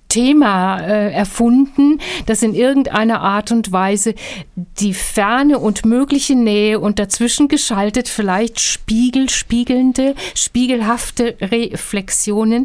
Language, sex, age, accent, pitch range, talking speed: German, female, 60-79, German, 200-250 Hz, 100 wpm